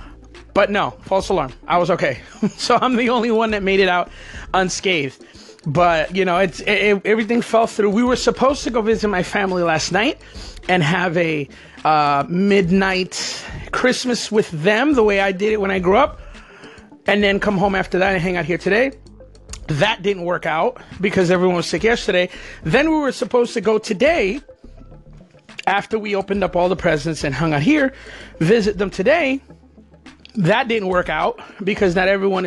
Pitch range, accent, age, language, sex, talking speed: 180-250 Hz, American, 30-49, English, male, 185 wpm